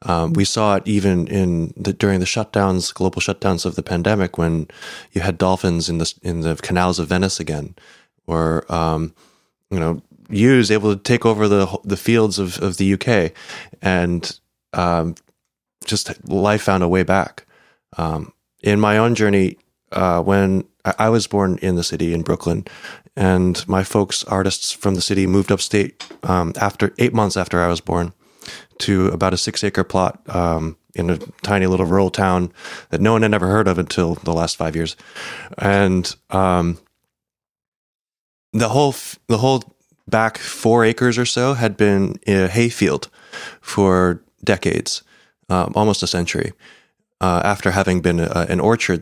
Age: 20-39